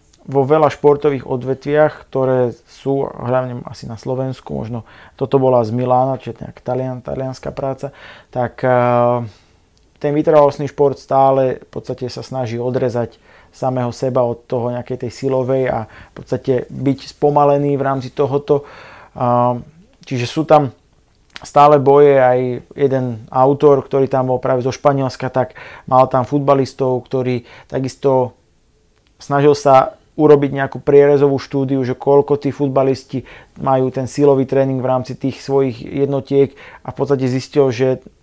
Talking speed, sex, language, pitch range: 140 wpm, male, Slovak, 130-140 Hz